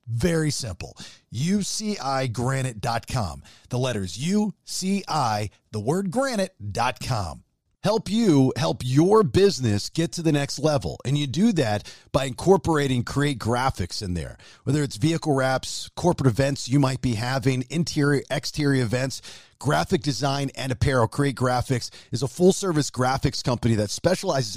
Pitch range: 125-170 Hz